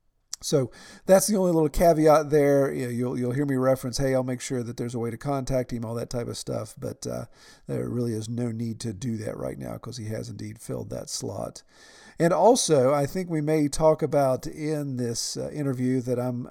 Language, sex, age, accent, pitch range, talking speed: English, male, 50-69, American, 115-140 Hz, 230 wpm